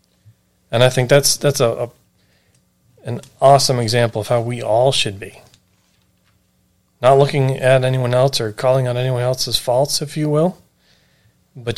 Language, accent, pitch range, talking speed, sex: English, American, 100-130 Hz, 160 wpm, male